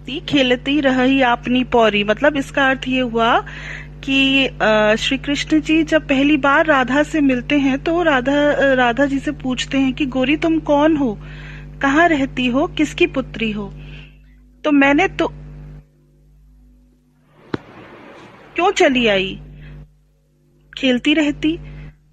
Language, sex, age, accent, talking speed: Hindi, female, 40-59, native, 125 wpm